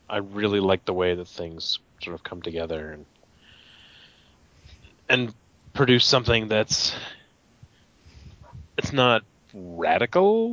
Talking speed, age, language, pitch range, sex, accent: 110 wpm, 30-49, English, 85-110 Hz, male, American